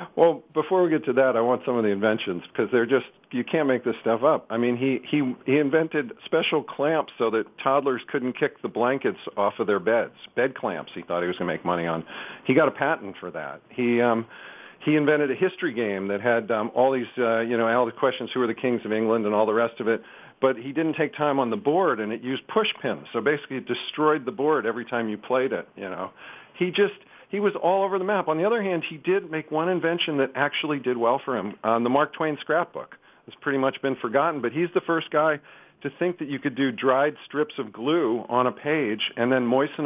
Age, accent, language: 50-69, American, English